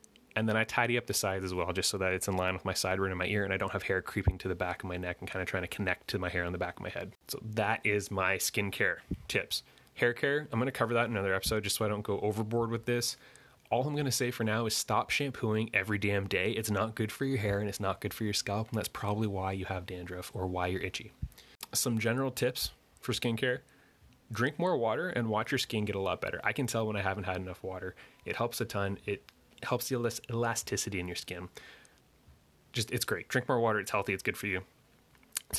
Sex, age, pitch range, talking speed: male, 20-39, 95-115 Hz, 265 wpm